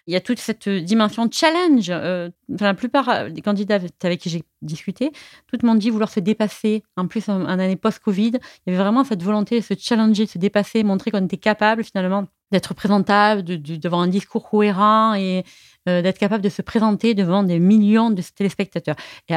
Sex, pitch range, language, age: female, 170-220 Hz, French, 30-49